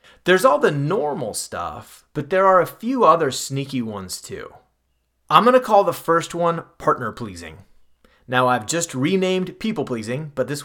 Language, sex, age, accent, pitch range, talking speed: English, male, 30-49, American, 120-165 Hz, 165 wpm